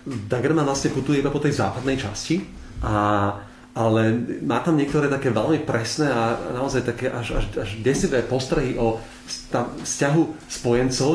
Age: 30-49